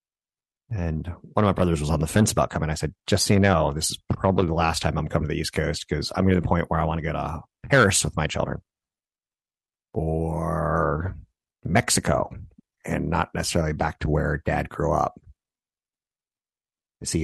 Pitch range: 80-95 Hz